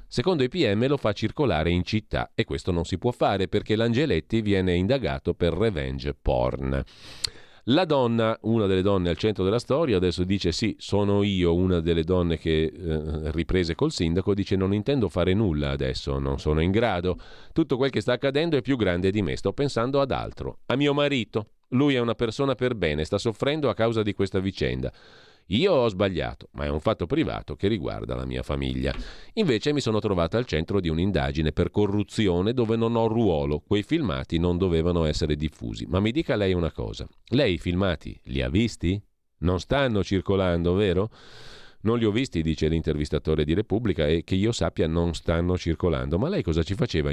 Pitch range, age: 80-110 Hz, 40-59